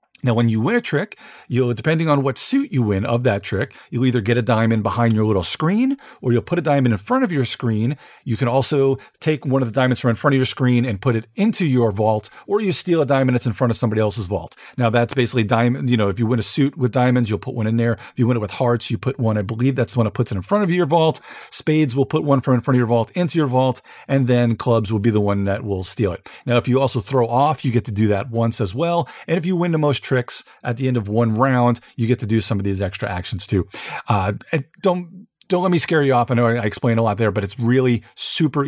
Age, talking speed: 40-59, 290 wpm